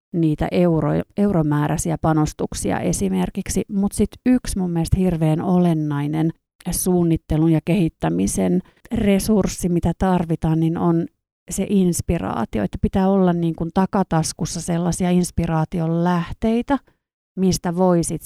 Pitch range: 160-190 Hz